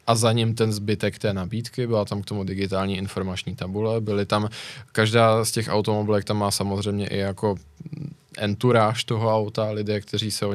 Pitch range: 105-120 Hz